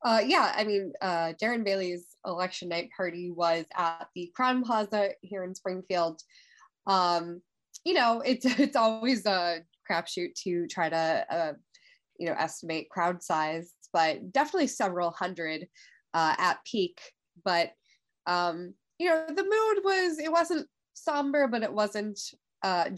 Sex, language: female, English